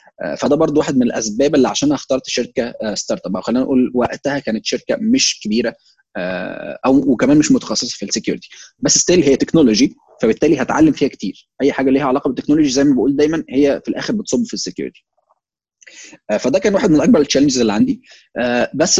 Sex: male